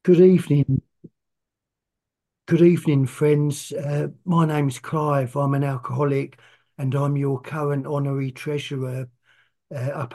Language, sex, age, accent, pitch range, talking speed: English, male, 50-69, British, 130-145 Hz, 125 wpm